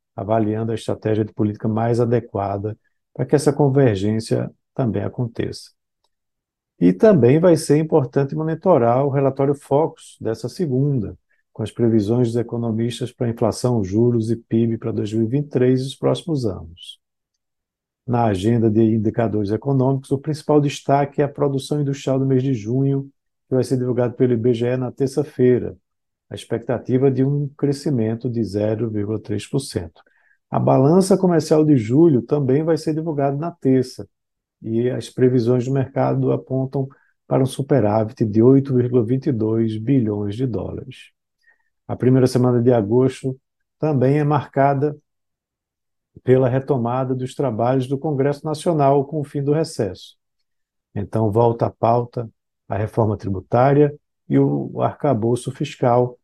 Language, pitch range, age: Portuguese, 115-140 Hz, 50-69